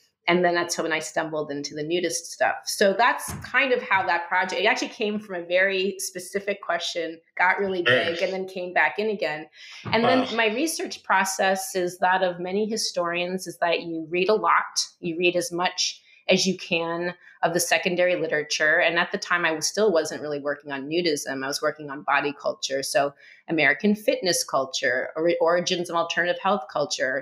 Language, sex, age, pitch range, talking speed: English, female, 30-49, 160-190 Hz, 190 wpm